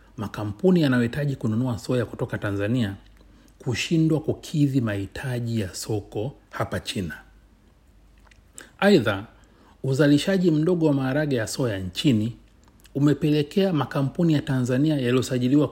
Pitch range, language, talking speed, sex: 105-140 Hz, Swahili, 100 wpm, male